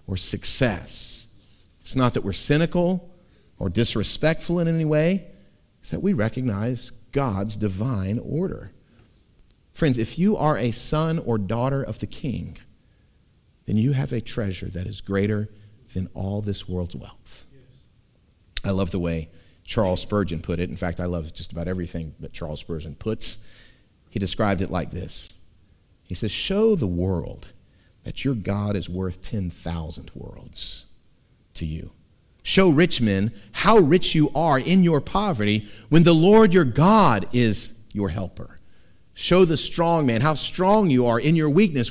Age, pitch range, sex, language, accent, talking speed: 40-59, 95-140 Hz, male, English, American, 155 wpm